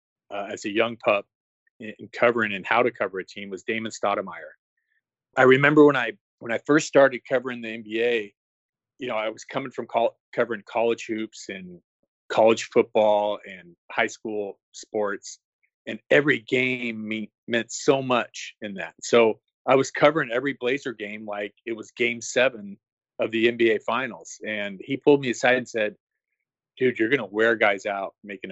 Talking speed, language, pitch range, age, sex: 175 wpm, English, 110-130 Hz, 30-49, male